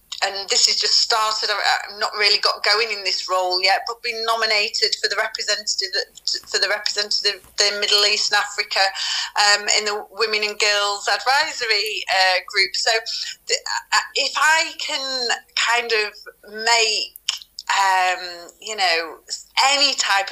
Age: 30-49